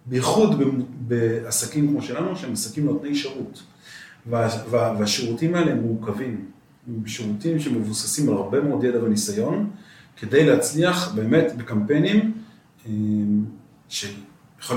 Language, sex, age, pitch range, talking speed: Hebrew, male, 40-59, 110-155 Hz, 110 wpm